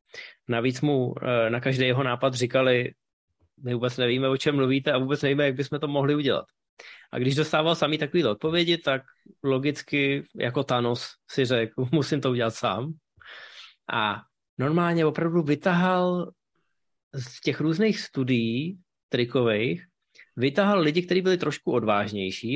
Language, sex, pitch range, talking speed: Czech, male, 130-160 Hz, 140 wpm